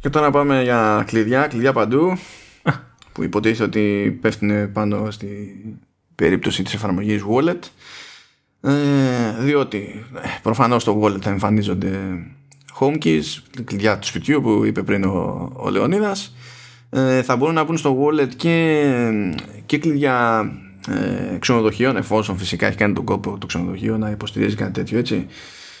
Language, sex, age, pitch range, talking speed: Greek, male, 20-39, 100-130 Hz, 130 wpm